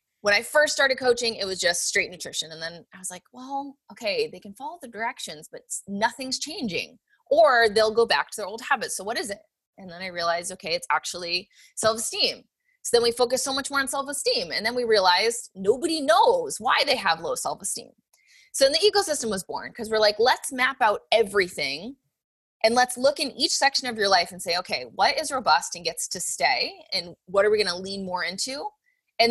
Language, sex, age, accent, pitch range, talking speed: English, female, 20-39, American, 185-270 Hz, 215 wpm